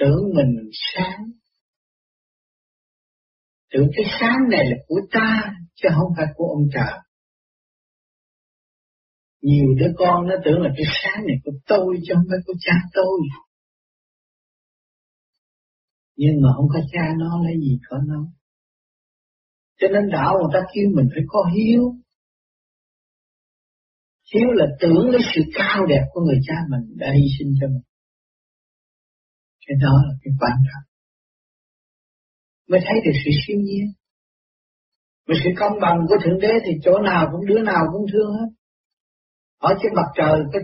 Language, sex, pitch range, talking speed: Vietnamese, male, 150-210 Hz, 150 wpm